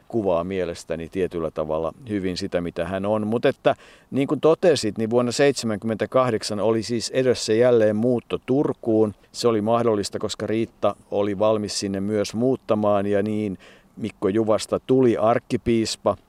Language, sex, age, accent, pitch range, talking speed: Finnish, male, 50-69, native, 95-115 Hz, 145 wpm